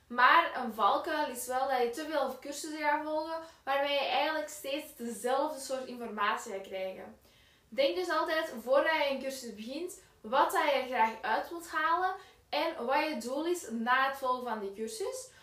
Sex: female